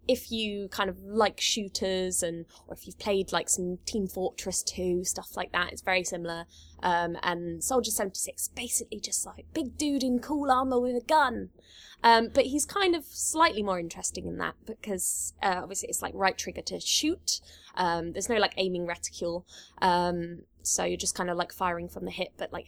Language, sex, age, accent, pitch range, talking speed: English, female, 20-39, British, 180-220 Hz, 200 wpm